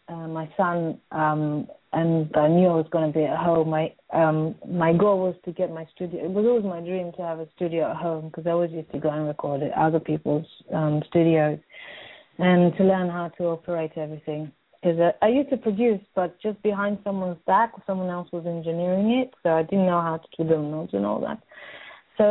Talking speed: 220 wpm